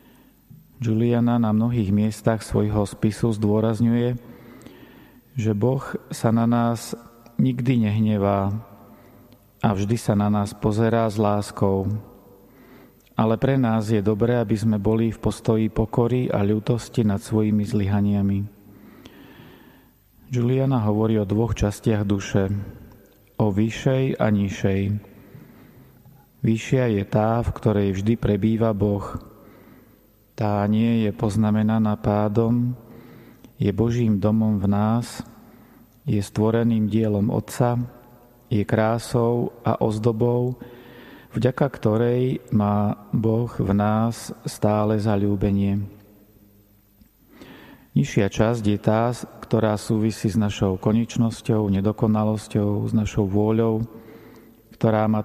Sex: male